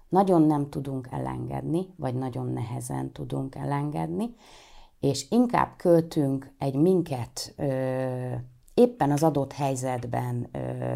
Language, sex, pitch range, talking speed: Hungarian, female, 125-165 Hz, 100 wpm